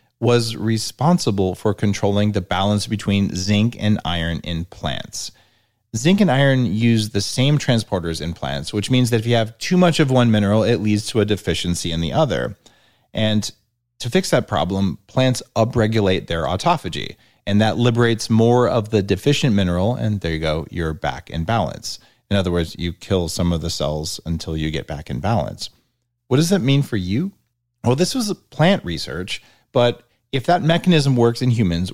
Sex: male